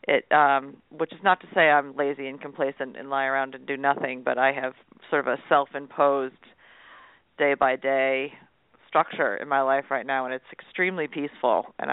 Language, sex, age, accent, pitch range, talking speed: English, female, 40-59, American, 135-165 Hz, 200 wpm